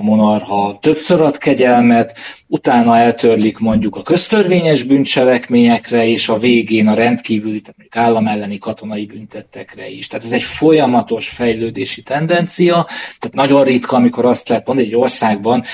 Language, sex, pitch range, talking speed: Hungarian, male, 110-140 Hz, 135 wpm